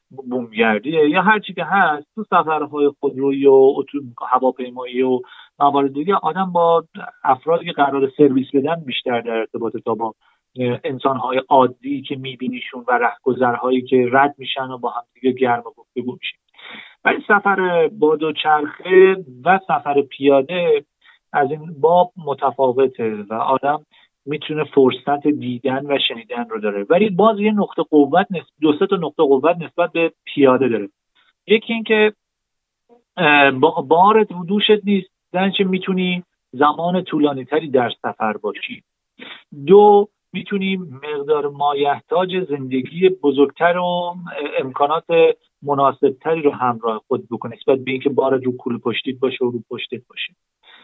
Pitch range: 130-185 Hz